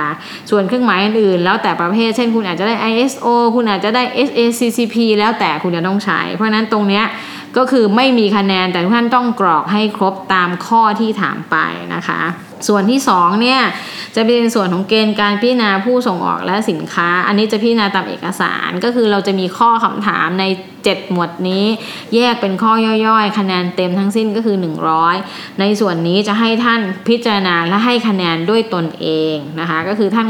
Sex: female